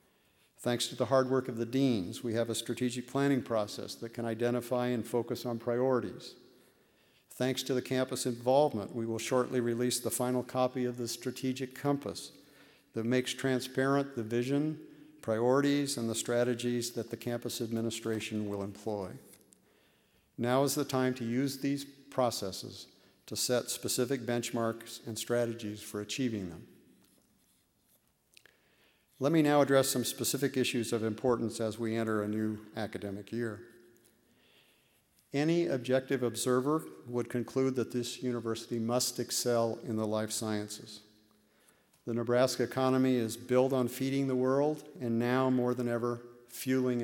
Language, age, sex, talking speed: English, 50-69, male, 145 wpm